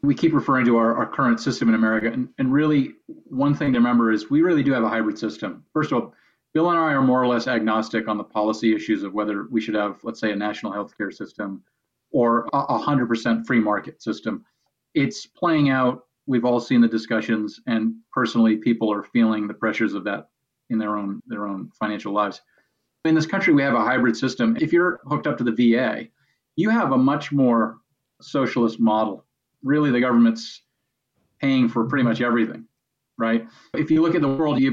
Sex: male